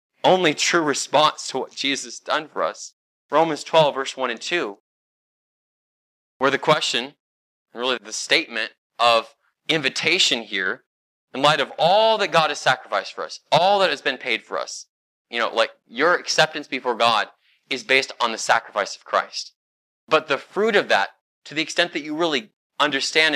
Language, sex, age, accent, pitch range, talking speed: English, male, 20-39, American, 115-165 Hz, 175 wpm